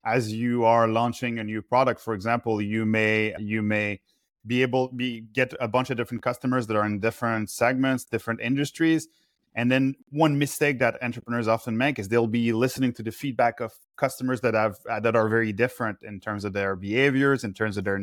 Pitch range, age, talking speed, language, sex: 110-130 Hz, 30-49, 205 wpm, English, male